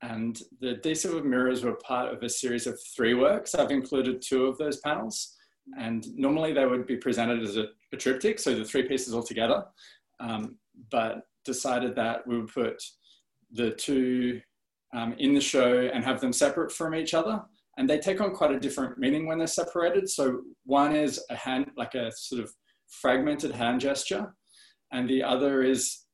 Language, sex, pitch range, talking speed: English, male, 120-145 Hz, 190 wpm